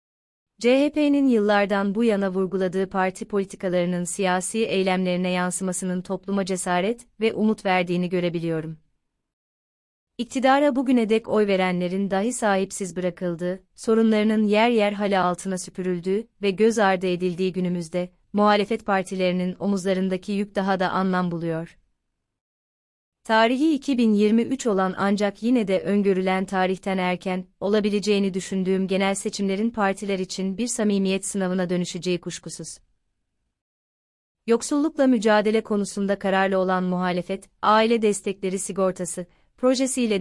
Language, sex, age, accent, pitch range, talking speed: Turkish, female, 30-49, native, 180-215 Hz, 110 wpm